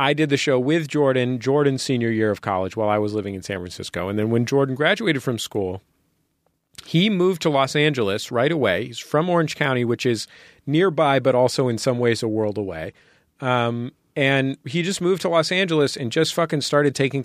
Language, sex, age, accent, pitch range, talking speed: English, male, 40-59, American, 100-135 Hz, 210 wpm